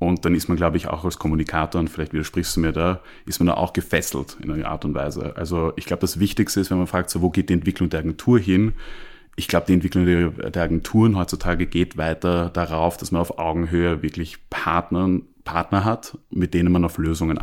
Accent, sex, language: German, male, German